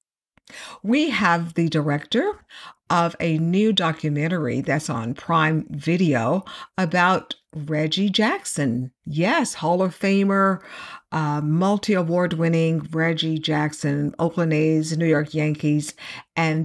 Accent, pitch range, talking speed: American, 150-195 Hz, 110 wpm